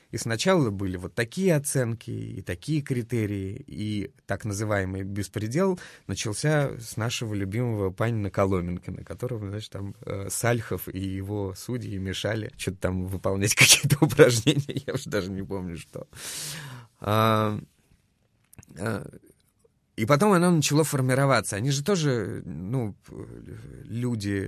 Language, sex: Russian, male